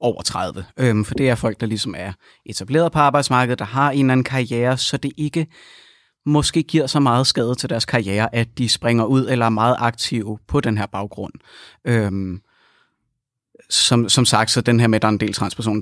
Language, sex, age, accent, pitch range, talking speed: Danish, male, 30-49, native, 110-135 Hz, 205 wpm